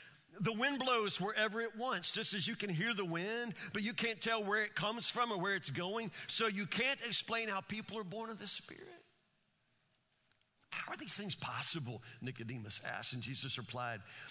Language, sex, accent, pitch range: English, male, American, 175-230 Hz